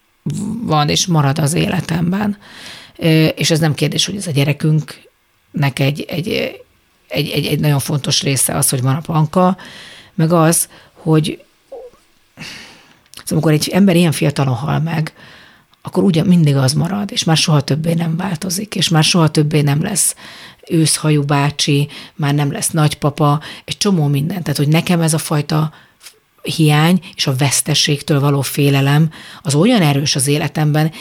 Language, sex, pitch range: Hungarian, female, 145-180 Hz